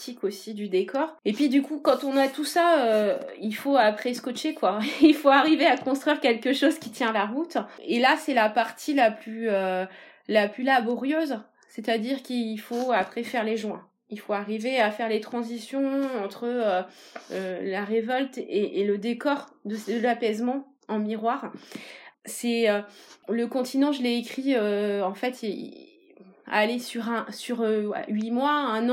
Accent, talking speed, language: French, 180 wpm, French